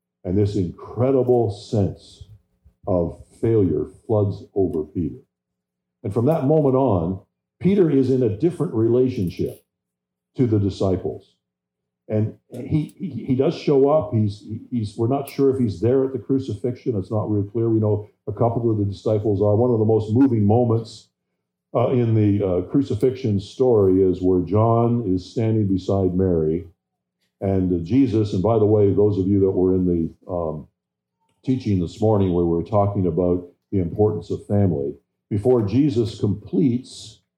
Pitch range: 90-120 Hz